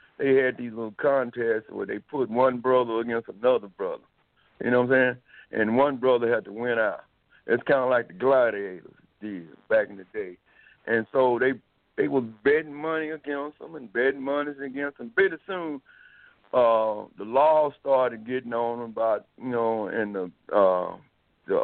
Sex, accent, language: male, American, English